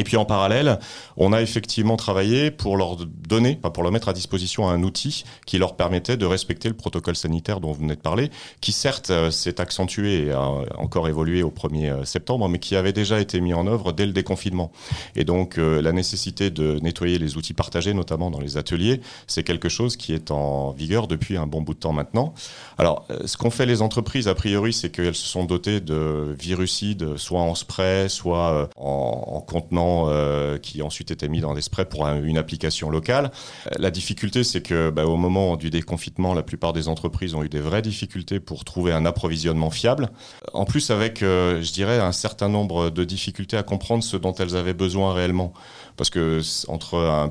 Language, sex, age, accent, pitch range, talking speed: French, male, 30-49, French, 80-100 Hz, 195 wpm